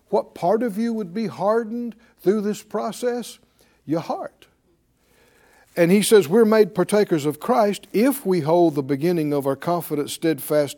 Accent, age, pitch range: American, 60-79, 160-225 Hz